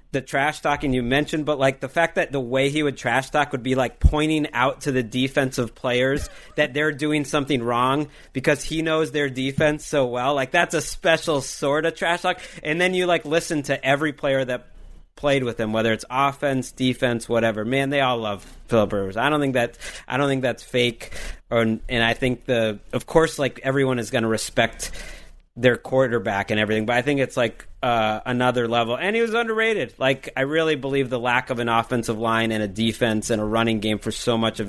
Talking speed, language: 220 wpm, English